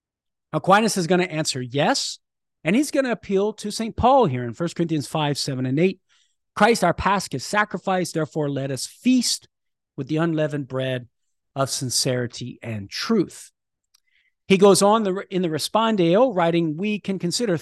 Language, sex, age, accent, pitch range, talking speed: English, male, 40-59, American, 135-195 Hz, 165 wpm